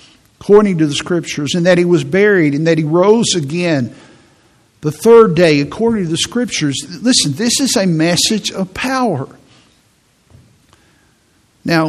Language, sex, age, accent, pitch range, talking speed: English, male, 50-69, American, 150-190 Hz, 145 wpm